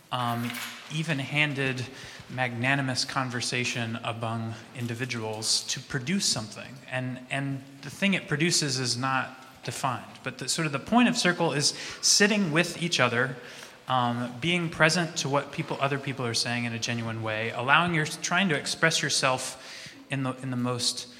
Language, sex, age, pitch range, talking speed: English, male, 20-39, 120-150 Hz, 160 wpm